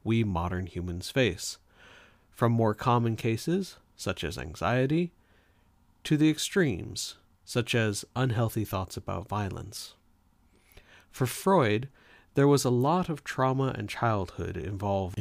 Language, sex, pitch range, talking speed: English, male, 95-140 Hz, 120 wpm